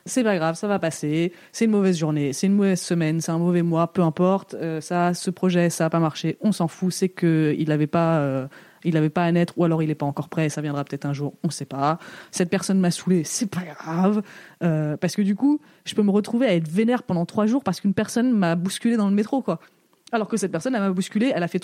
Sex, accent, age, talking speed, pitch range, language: female, French, 20-39, 265 wpm, 165-220 Hz, French